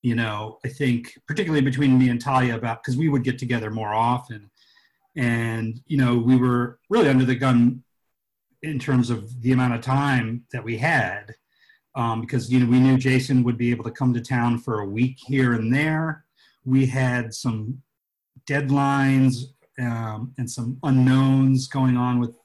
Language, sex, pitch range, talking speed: English, male, 120-150 Hz, 180 wpm